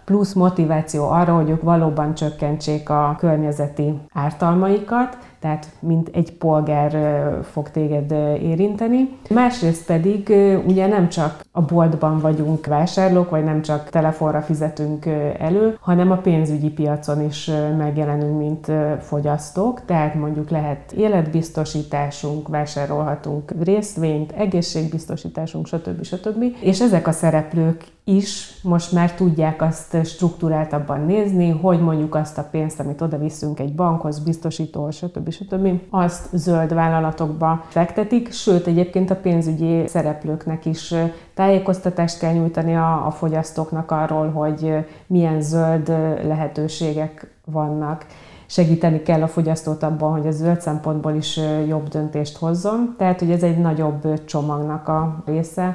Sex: female